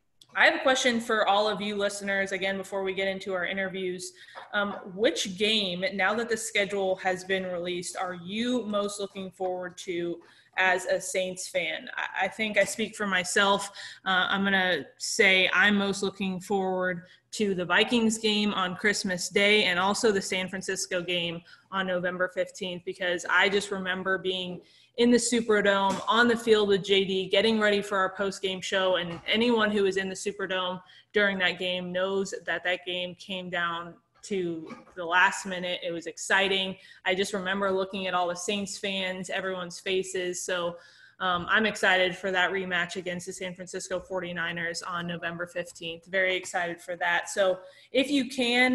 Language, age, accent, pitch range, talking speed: English, 20-39, American, 180-205 Hz, 175 wpm